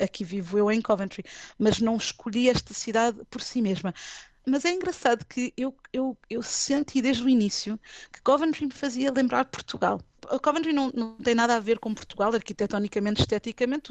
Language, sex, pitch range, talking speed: Portuguese, female, 200-240 Hz, 180 wpm